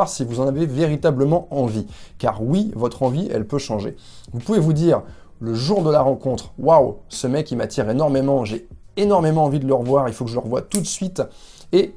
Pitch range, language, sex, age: 125-175 Hz, French, male, 20-39